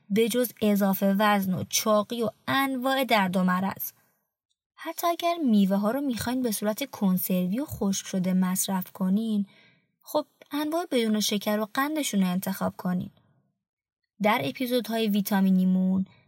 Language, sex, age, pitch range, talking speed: Persian, female, 20-39, 195-250 Hz, 135 wpm